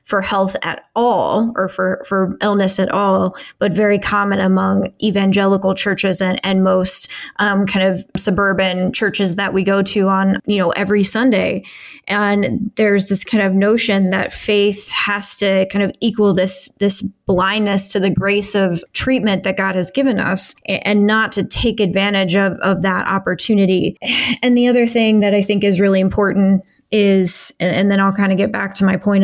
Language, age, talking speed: English, 20-39, 185 wpm